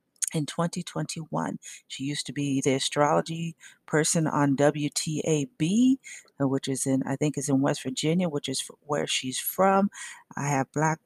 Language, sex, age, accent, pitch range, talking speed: English, female, 40-59, American, 140-170 Hz, 150 wpm